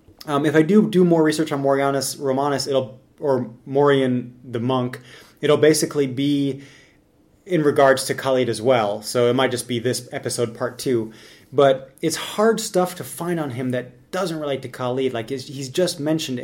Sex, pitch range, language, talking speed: male, 130-165 Hz, English, 185 wpm